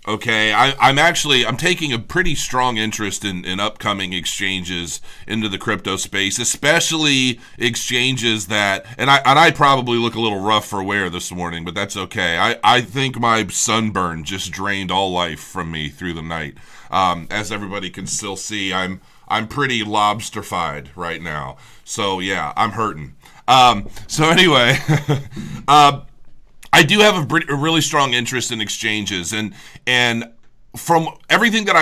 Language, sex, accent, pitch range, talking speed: English, male, American, 100-140 Hz, 165 wpm